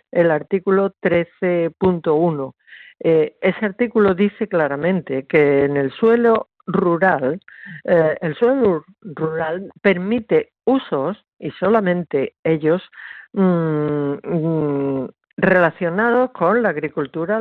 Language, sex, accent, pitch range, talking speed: Spanish, female, Spanish, 155-200 Hz, 100 wpm